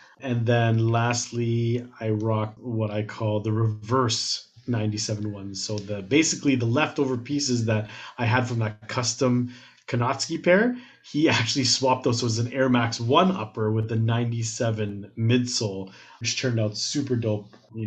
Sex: male